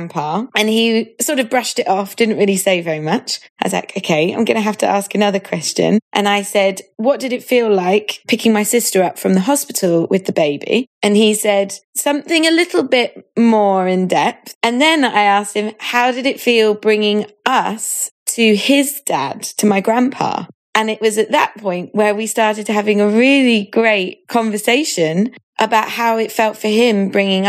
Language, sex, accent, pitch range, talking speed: English, female, British, 190-235 Hz, 195 wpm